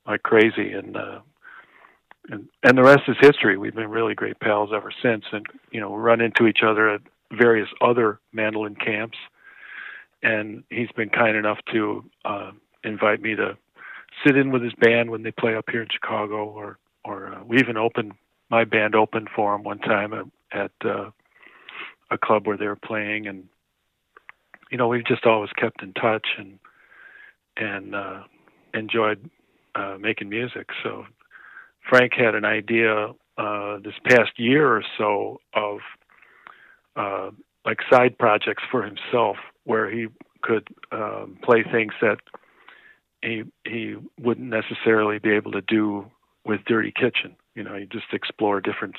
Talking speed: 160 wpm